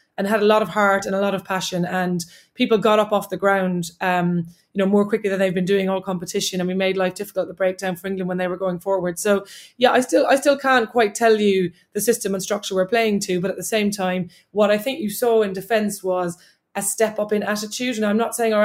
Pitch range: 185-215 Hz